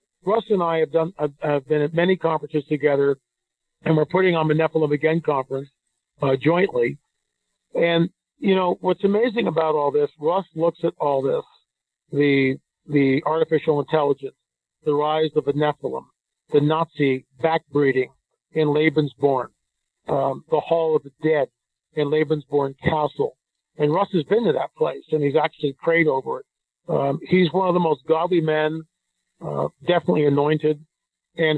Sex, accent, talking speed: male, American, 155 wpm